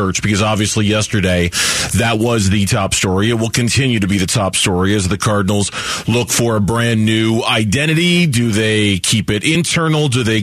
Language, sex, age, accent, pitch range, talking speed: English, male, 40-59, American, 105-130 Hz, 185 wpm